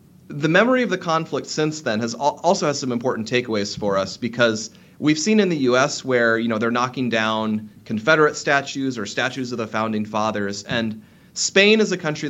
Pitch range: 115-160 Hz